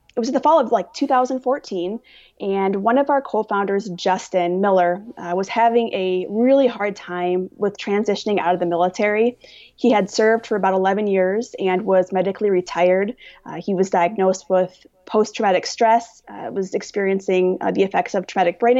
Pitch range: 185-230 Hz